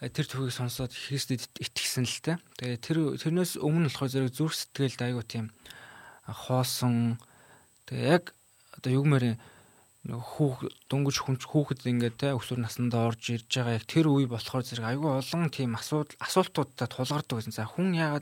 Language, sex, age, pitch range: Korean, male, 20-39, 120-145 Hz